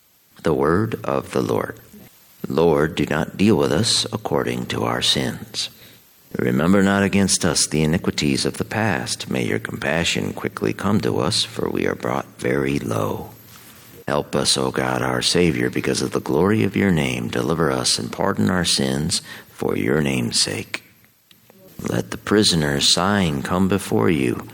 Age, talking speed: 50-69, 165 wpm